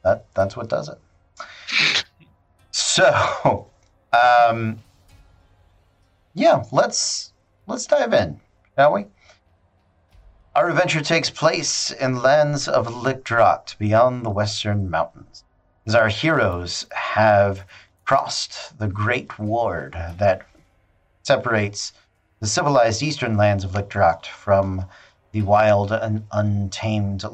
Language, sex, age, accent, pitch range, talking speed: English, male, 40-59, American, 95-120 Hz, 105 wpm